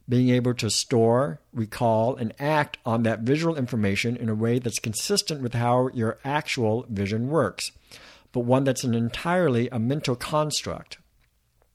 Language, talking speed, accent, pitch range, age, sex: English, 155 wpm, American, 115-145 Hz, 60-79, male